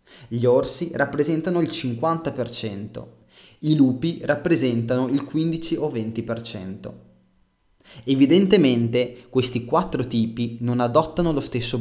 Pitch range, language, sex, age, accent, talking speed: 115-140 Hz, Italian, male, 20-39, native, 100 wpm